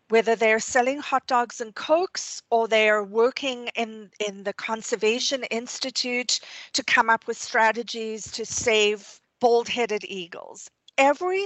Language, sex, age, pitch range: English, female, 40-59, 215-280 Hz